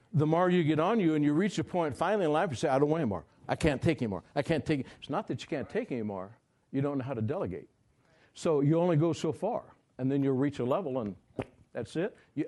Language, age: English, 60-79